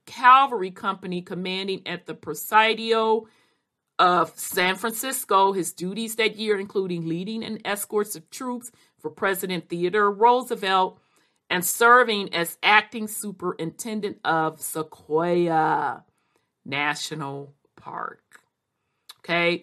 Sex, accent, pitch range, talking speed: female, American, 165-210 Hz, 100 wpm